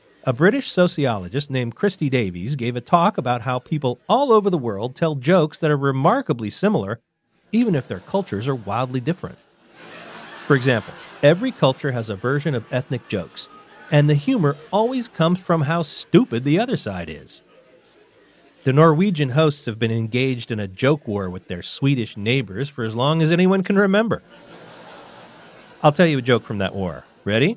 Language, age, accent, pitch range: English, 40-59, American, 120-175 Hz